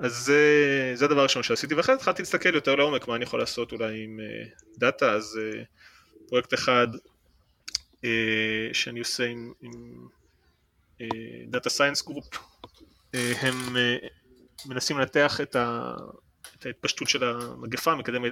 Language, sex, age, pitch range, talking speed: Hebrew, male, 20-39, 115-135 Hz, 140 wpm